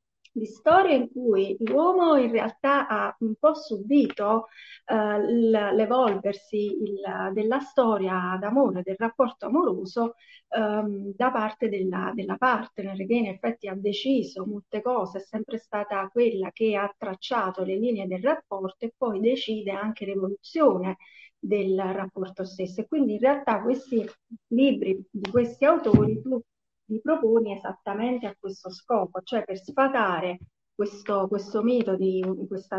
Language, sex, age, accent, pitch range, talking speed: Italian, female, 40-59, native, 195-230 Hz, 135 wpm